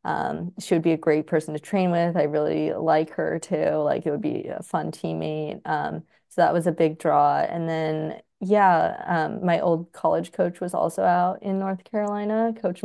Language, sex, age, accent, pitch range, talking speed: English, female, 20-39, American, 155-185 Hz, 205 wpm